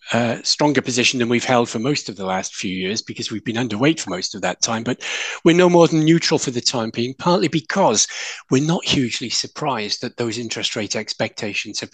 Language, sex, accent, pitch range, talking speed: English, male, British, 110-145 Hz, 220 wpm